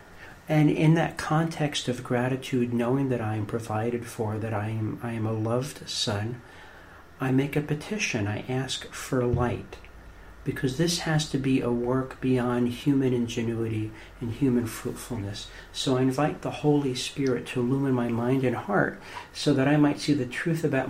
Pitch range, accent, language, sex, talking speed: 110-140 Hz, American, English, male, 170 wpm